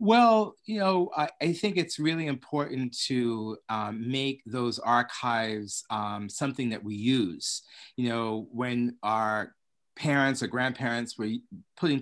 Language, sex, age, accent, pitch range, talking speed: English, male, 30-49, American, 115-140 Hz, 140 wpm